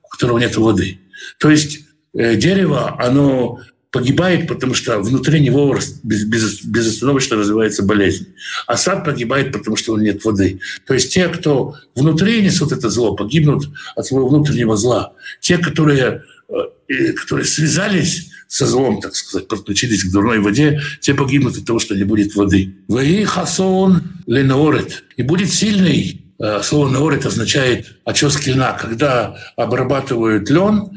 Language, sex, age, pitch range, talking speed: Russian, male, 60-79, 115-170 Hz, 135 wpm